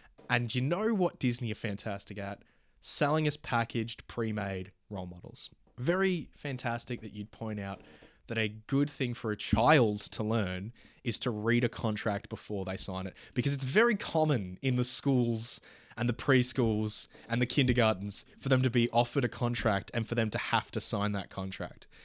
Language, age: English, 20-39